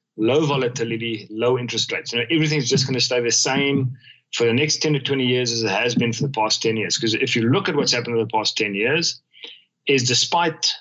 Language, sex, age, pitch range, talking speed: English, male, 40-59, 115-150 Hz, 245 wpm